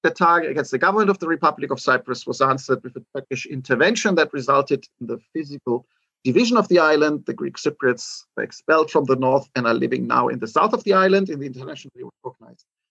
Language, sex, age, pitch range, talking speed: English, male, 40-59, 140-205 Hz, 220 wpm